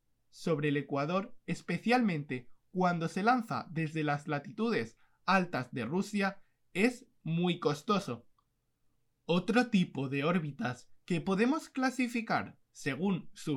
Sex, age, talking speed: male, 20-39, 110 wpm